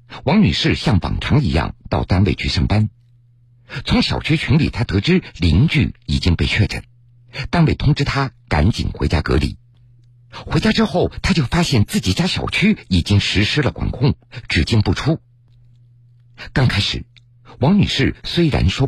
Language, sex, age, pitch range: Chinese, male, 50-69, 110-130 Hz